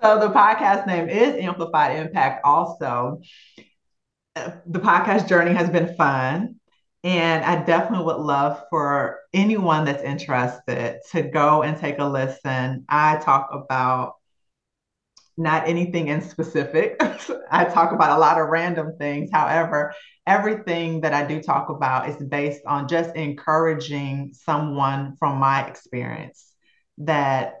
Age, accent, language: 30-49, American, English